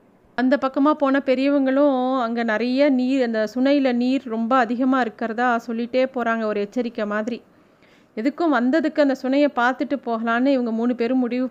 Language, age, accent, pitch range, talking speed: Tamil, 30-49, native, 225-270 Hz, 145 wpm